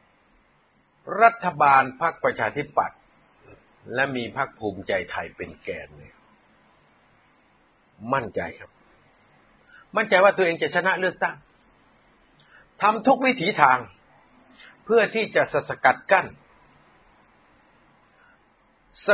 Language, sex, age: Thai, male, 60-79